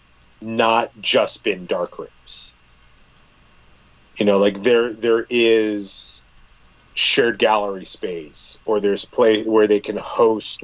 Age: 30-49